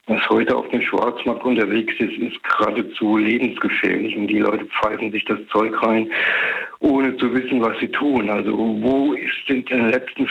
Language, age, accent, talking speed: German, 60-79, German, 175 wpm